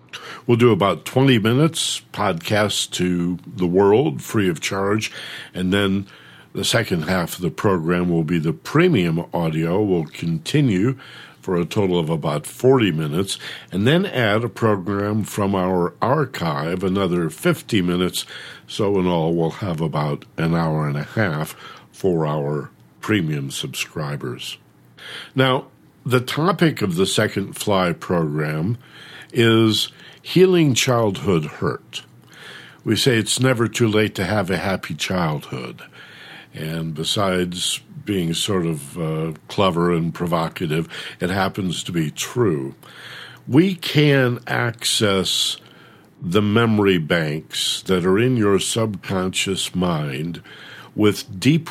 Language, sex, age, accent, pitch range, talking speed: English, male, 60-79, American, 85-115 Hz, 130 wpm